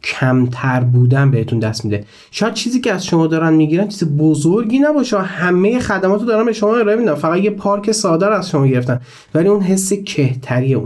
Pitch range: 130-175 Hz